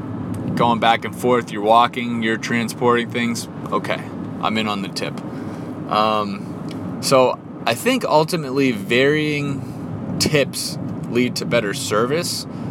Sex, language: male, English